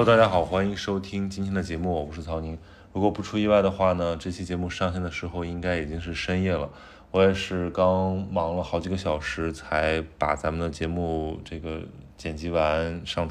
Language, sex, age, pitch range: Chinese, male, 20-39, 80-95 Hz